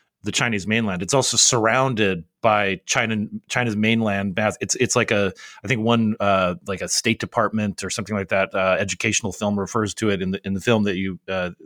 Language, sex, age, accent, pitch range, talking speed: English, male, 30-49, American, 95-115 Hz, 210 wpm